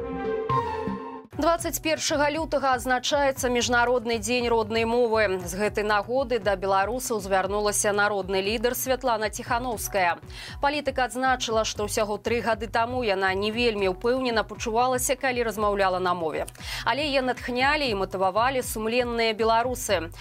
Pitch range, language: 205-260 Hz, Russian